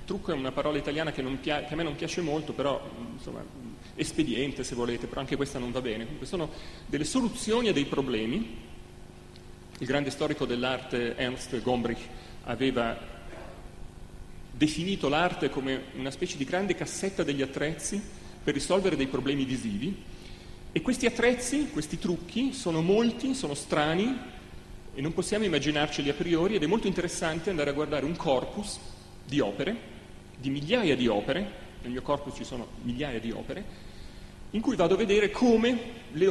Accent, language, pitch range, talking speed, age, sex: native, Italian, 120-175 Hz, 165 wpm, 30-49, male